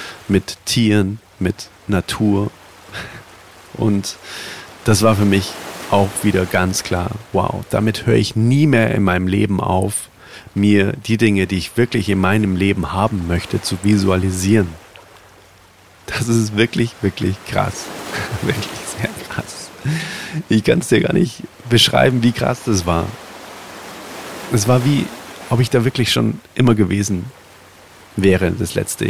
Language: German